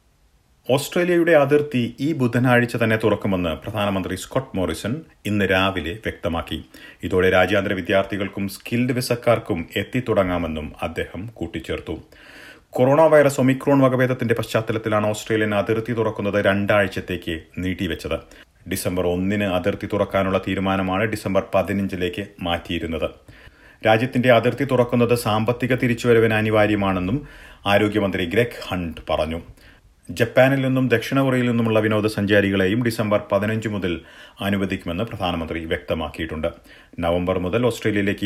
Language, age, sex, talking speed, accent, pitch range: Malayalam, 40-59, male, 100 wpm, native, 90-115 Hz